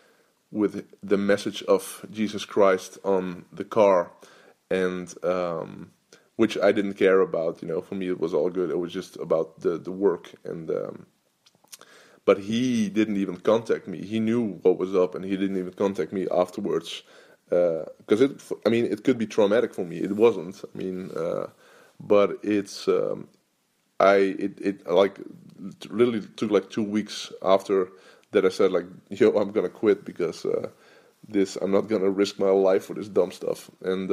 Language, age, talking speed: English, 20-39, 180 wpm